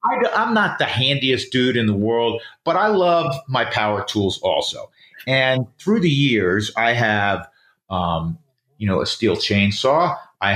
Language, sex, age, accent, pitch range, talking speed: English, male, 40-59, American, 105-145 Hz, 160 wpm